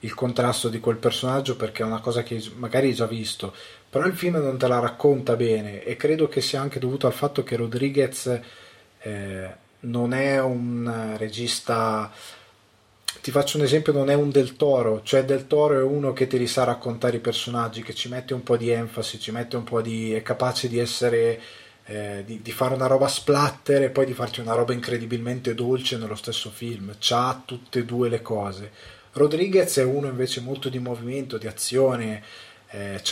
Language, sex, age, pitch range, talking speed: Italian, male, 20-39, 110-135 Hz, 195 wpm